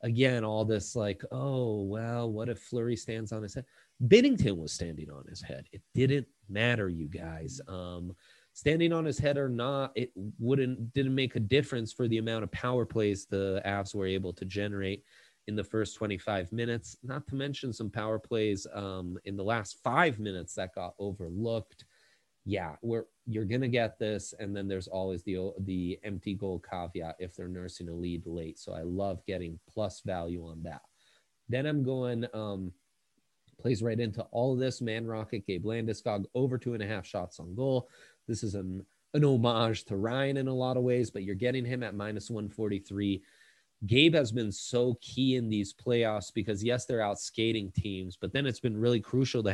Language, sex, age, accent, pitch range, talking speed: English, male, 30-49, American, 95-125 Hz, 195 wpm